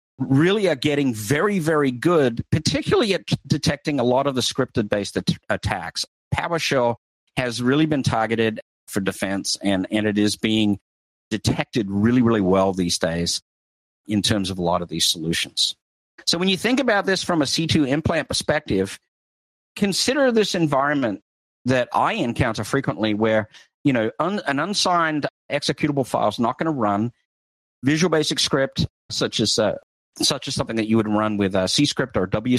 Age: 50-69